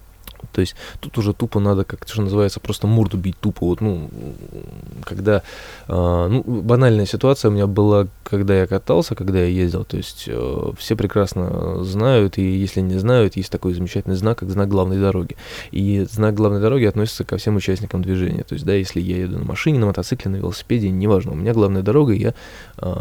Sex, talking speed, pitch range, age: male, 195 wpm, 95-110 Hz, 20-39